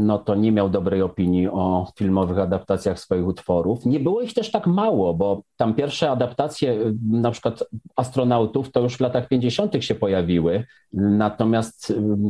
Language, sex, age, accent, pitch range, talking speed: Polish, male, 40-59, native, 105-140 Hz, 155 wpm